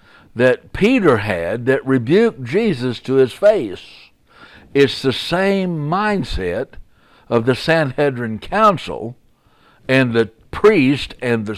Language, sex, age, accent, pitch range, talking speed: English, male, 60-79, American, 115-155 Hz, 115 wpm